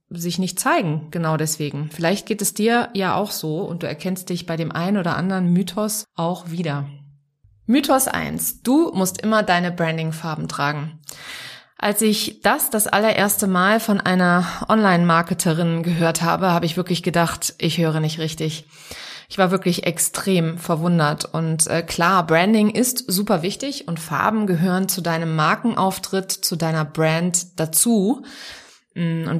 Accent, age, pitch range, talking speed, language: German, 20-39, 160-200 Hz, 150 wpm, German